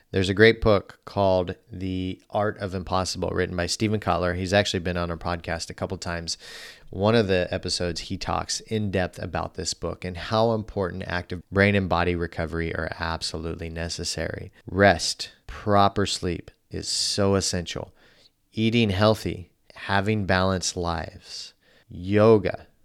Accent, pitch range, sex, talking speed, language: American, 90-105 Hz, male, 145 wpm, English